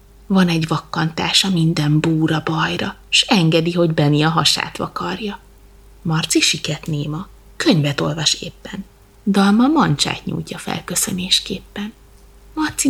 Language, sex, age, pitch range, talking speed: Hungarian, female, 30-49, 170-220 Hz, 110 wpm